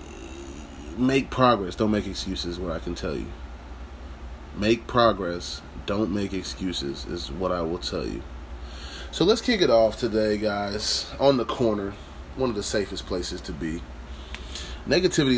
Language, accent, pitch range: English, American, 75-110 Hz